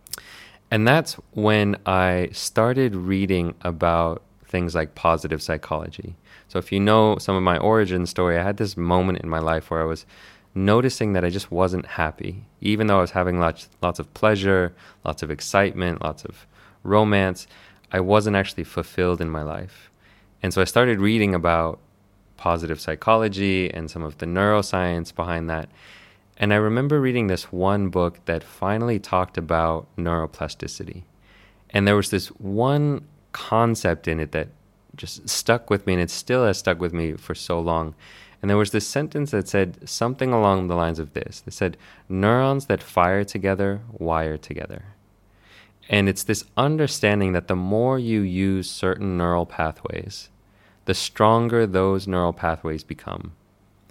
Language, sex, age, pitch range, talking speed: English, male, 20-39, 85-105 Hz, 165 wpm